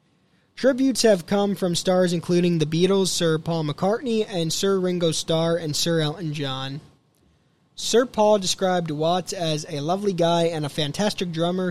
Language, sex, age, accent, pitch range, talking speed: English, male, 20-39, American, 155-195 Hz, 160 wpm